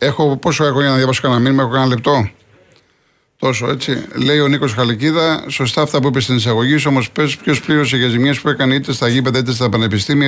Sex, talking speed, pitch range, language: male, 215 wpm, 115-145 Hz, Greek